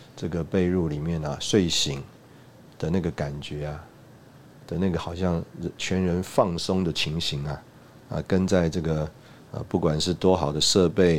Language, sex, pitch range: Chinese, male, 80-95 Hz